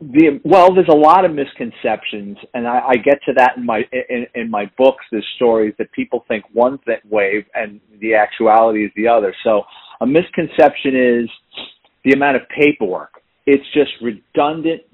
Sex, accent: male, American